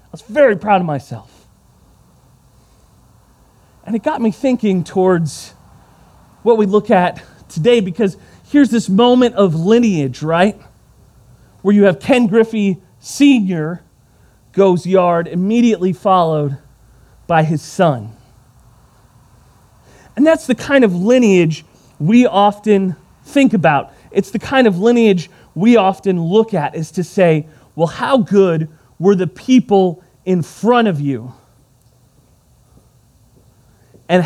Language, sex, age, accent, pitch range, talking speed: English, male, 30-49, American, 135-200 Hz, 120 wpm